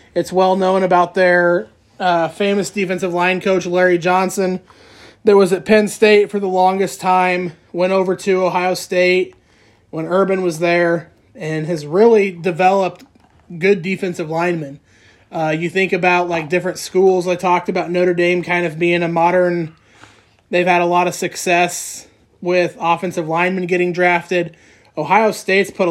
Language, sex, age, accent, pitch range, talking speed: English, male, 20-39, American, 170-190 Hz, 155 wpm